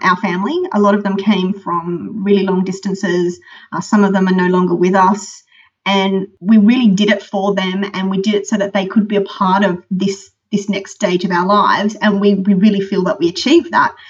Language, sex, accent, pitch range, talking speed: English, female, Australian, 185-210 Hz, 235 wpm